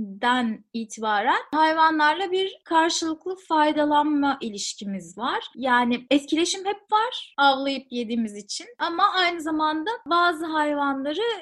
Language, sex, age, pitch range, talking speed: Turkish, female, 30-49, 245-330 Hz, 105 wpm